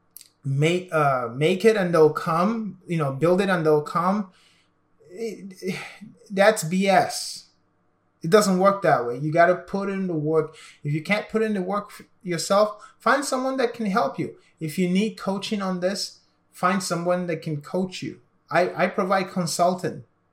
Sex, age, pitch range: male, 20-39, 150-185 Hz